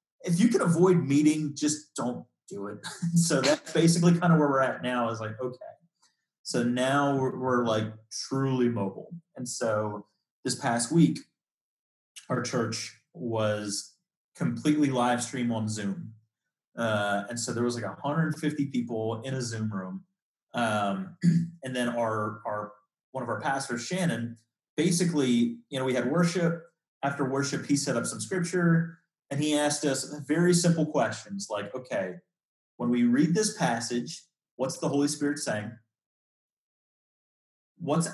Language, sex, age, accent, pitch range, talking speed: English, male, 30-49, American, 115-155 Hz, 150 wpm